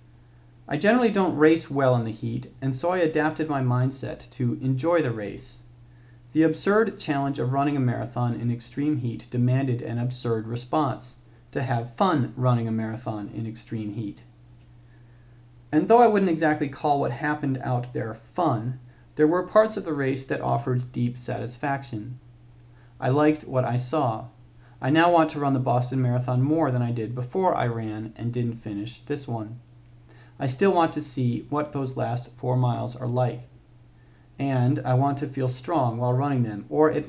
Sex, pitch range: male, 120-140 Hz